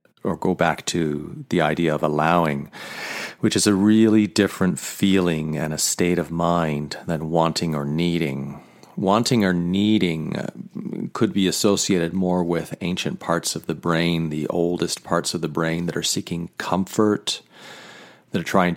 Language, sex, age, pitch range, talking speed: English, male, 40-59, 80-100 Hz, 155 wpm